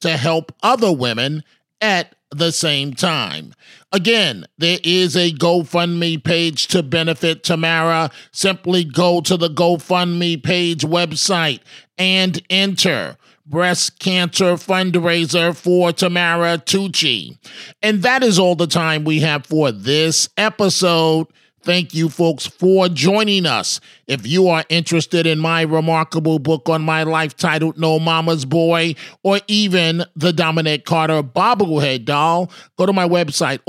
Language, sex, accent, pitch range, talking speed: English, male, American, 160-180 Hz, 135 wpm